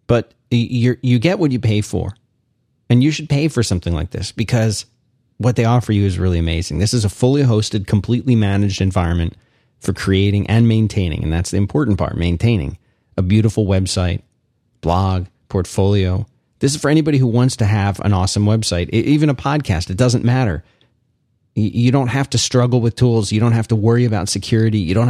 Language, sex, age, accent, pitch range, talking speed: English, male, 30-49, American, 105-130 Hz, 190 wpm